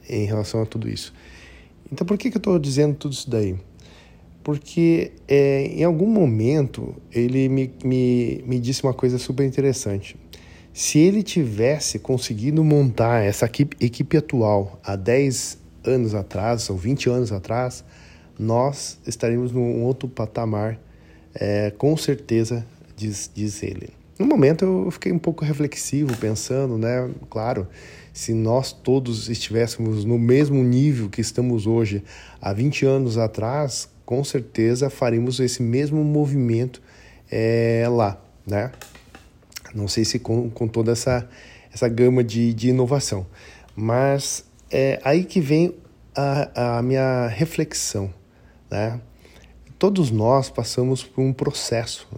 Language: Portuguese